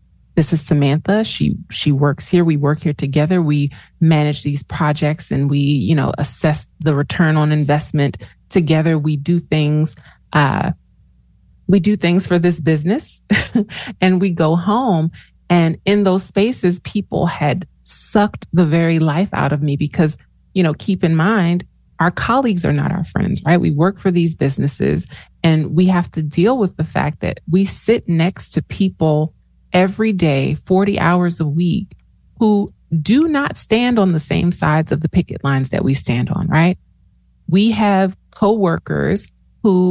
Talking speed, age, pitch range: 165 wpm, 30-49, 150-185 Hz